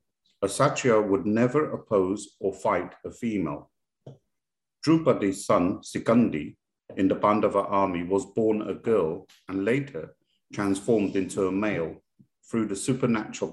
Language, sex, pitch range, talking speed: English, male, 95-125 Hz, 130 wpm